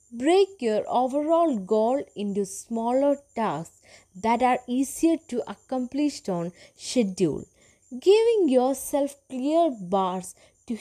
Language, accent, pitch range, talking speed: English, Indian, 200-280 Hz, 105 wpm